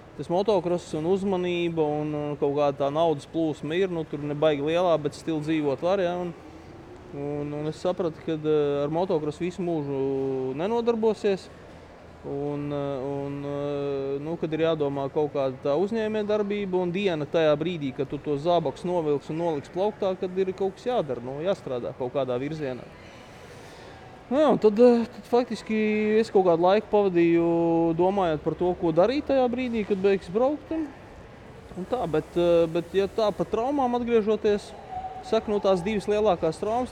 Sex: male